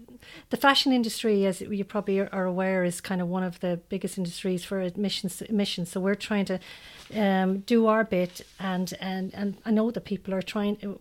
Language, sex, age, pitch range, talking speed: English, female, 40-59, 190-225 Hz, 195 wpm